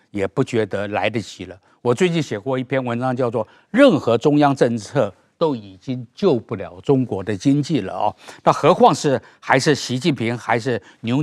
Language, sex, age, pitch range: Chinese, male, 50-69, 110-145 Hz